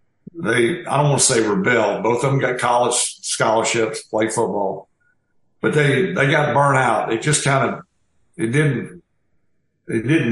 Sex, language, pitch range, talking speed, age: male, English, 125-160 Hz, 170 wpm, 60-79